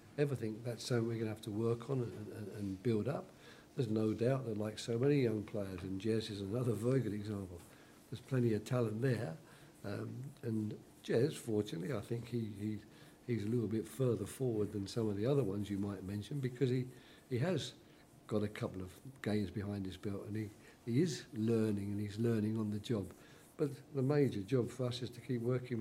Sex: male